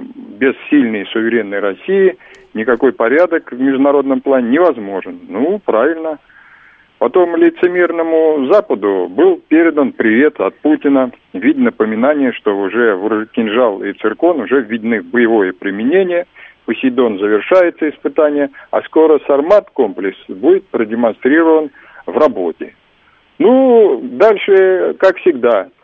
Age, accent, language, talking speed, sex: 50-69, native, Russian, 110 wpm, male